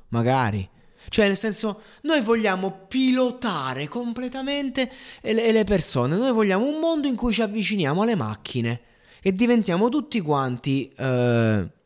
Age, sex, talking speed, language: 20-39, male, 125 wpm, Italian